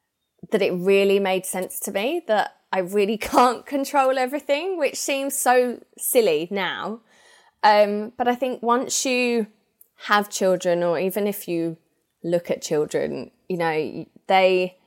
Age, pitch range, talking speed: 20-39, 165-215 Hz, 145 wpm